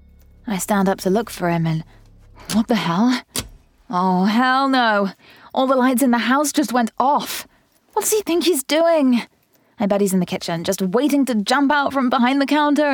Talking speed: 205 wpm